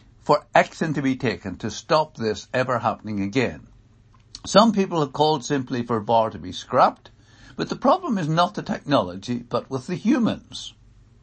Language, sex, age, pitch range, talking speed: English, male, 60-79, 115-170 Hz, 170 wpm